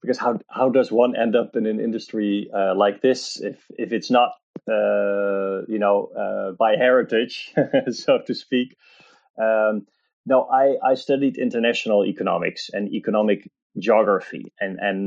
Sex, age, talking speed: male, 20-39, 150 wpm